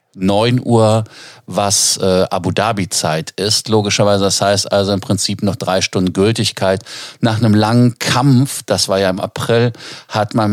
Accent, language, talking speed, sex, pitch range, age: German, German, 160 wpm, male, 95-115 Hz, 50-69